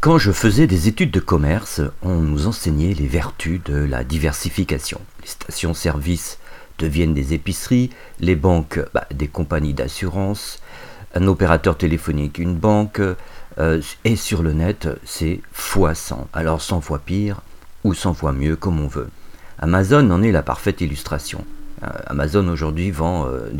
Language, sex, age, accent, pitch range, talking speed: French, male, 50-69, French, 75-95 Hz, 155 wpm